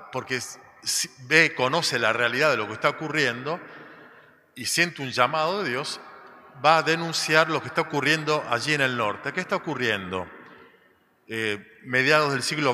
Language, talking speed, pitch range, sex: Spanish, 160 wpm, 120-150 Hz, male